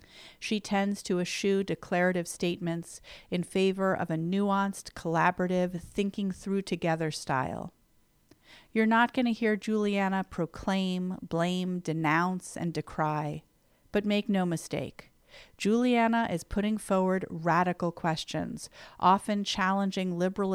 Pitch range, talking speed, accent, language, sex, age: 170-195 Hz, 110 wpm, American, English, female, 40-59